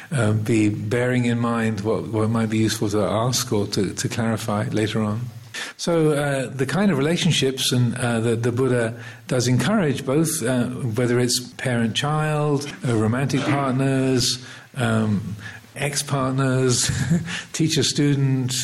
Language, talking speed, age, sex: English, 130 wpm, 50-69, male